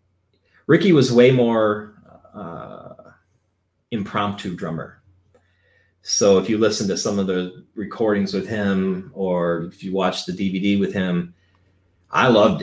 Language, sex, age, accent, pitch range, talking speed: English, male, 30-49, American, 90-105 Hz, 135 wpm